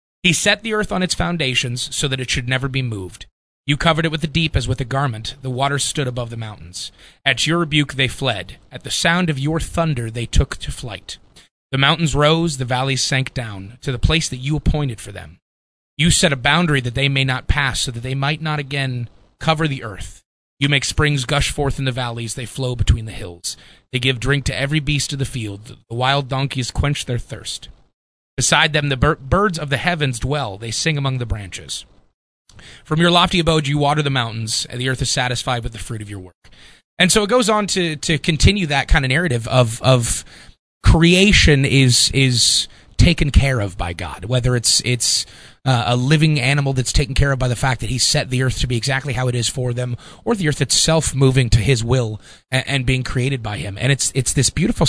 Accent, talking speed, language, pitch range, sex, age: American, 230 wpm, English, 120-150 Hz, male, 30-49